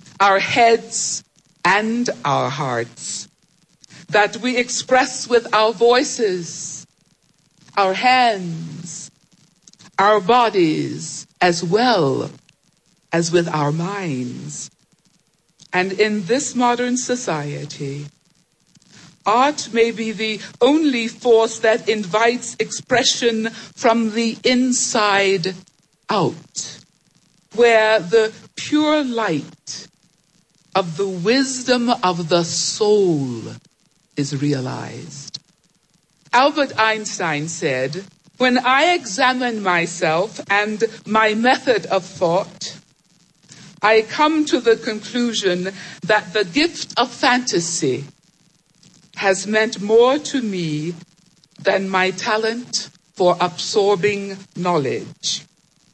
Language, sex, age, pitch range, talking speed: English, female, 60-79, 170-230 Hz, 90 wpm